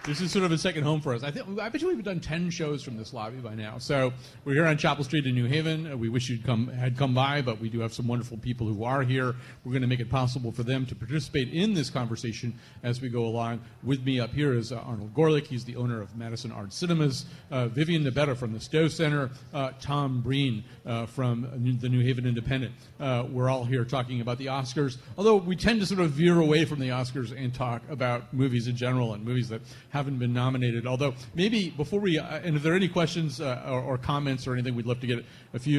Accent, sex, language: American, male, English